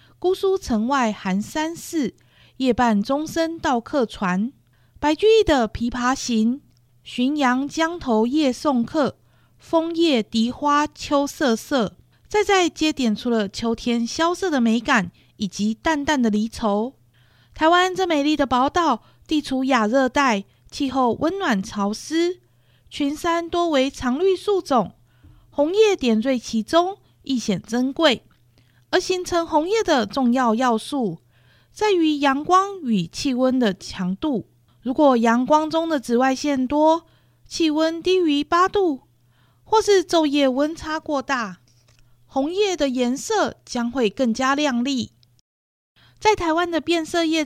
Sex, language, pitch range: female, Chinese, 225-325 Hz